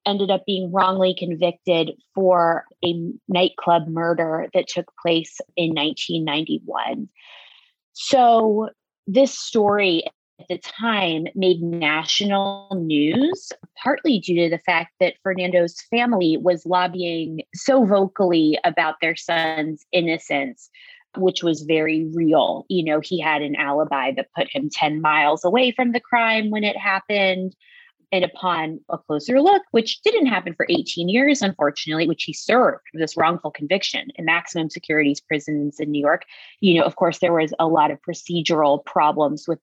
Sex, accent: female, American